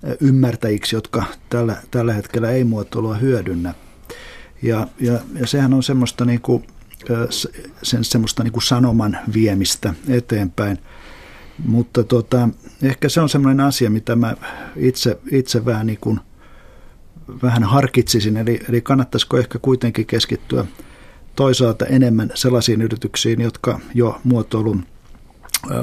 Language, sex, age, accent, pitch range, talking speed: Finnish, male, 50-69, native, 110-125 Hz, 120 wpm